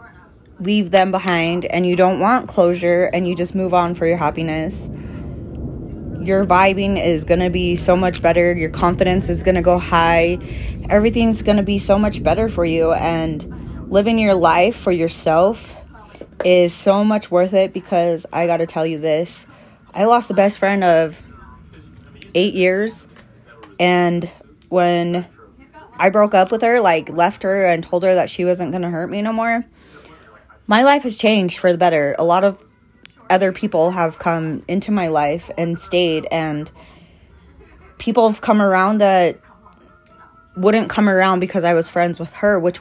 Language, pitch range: English, 165-195 Hz